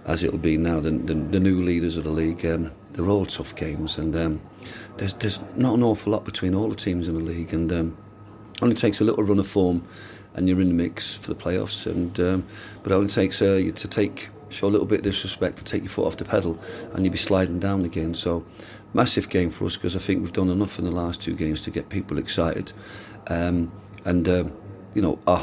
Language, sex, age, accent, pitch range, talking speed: English, male, 40-59, British, 85-105 Hz, 245 wpm